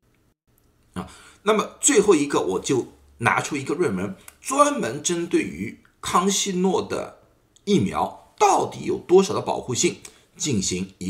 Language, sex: Chinese, male